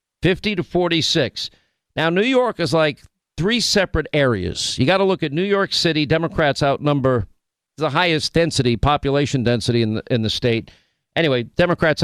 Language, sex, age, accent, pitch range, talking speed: English, male, 50-69, American, 130-180 Hz, 165 wpm